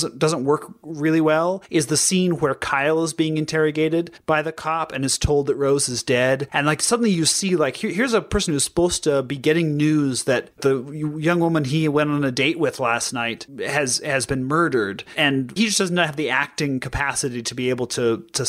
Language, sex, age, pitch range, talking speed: English, male, 30-49, 140-175 Hz, 220 wpm